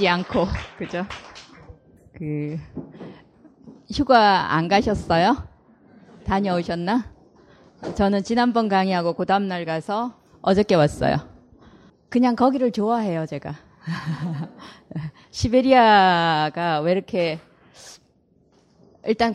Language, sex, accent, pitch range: Korean, female, native, 155-210 Hz